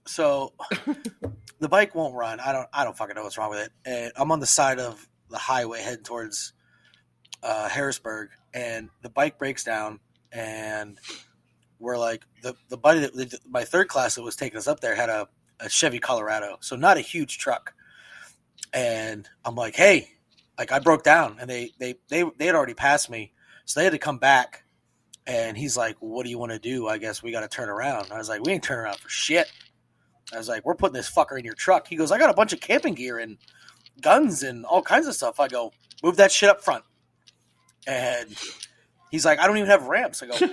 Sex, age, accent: male, 30-49, American